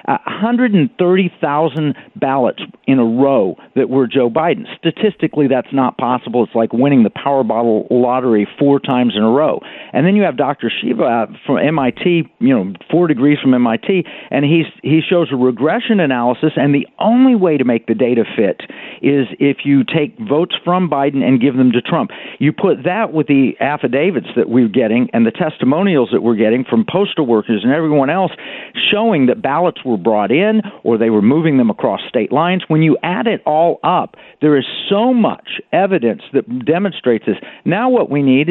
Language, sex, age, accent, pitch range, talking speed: English, male, 50-69, American, 125-185 Hz, 195 wpm